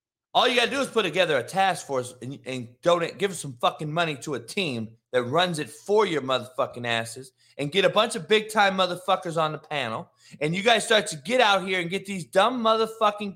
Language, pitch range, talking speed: English, 120-195 Hz, 235 wpm